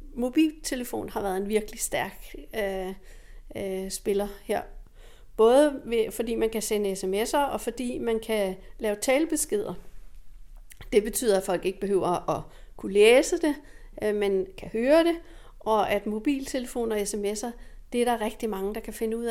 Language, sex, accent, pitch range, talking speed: Danish, female, native, 205-250 Hz, 150 wpm